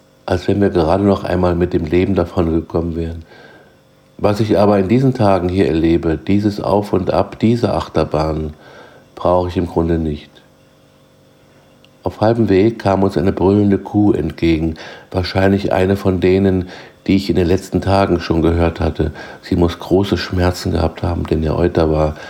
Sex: male